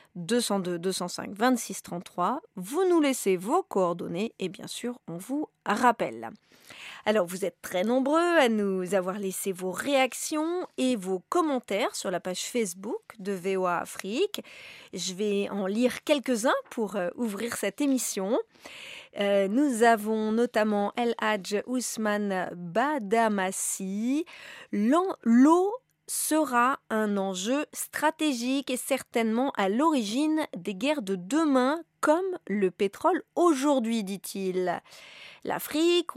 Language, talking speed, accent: French, 120 wpm, French